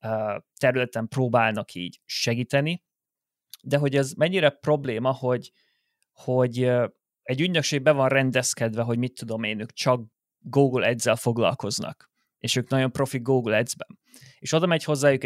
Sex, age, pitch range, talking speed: male, 30-49, 125-145 Hz, 140 wpm